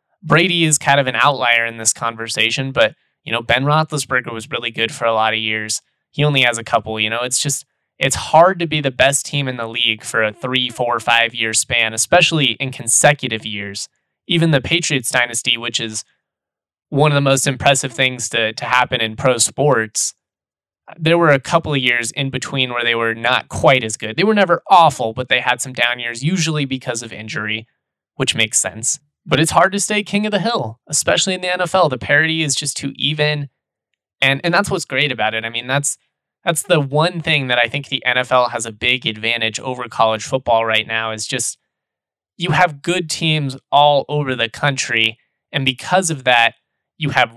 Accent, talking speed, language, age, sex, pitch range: American, 210 wpm, English, 20-39, male, 115-145 Hz